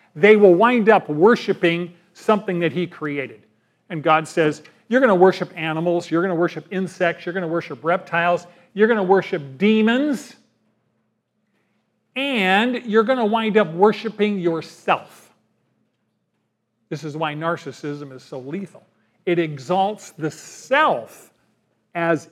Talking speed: 140 wpm